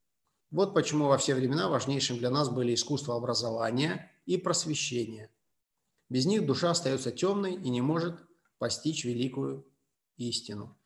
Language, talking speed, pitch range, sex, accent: Russian, 135 wpm, 120-155 Hz, male, native